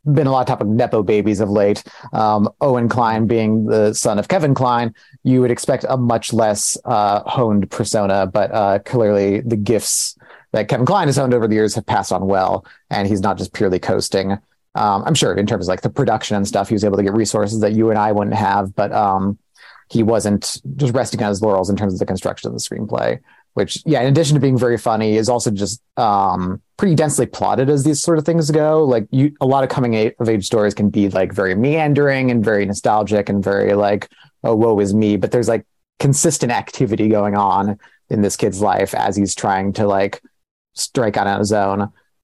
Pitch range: 100-125 Hz